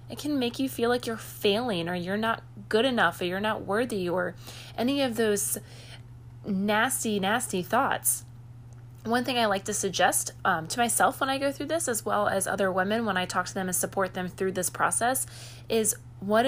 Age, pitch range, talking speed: 20-39, 160-220 Hz, 205 wpm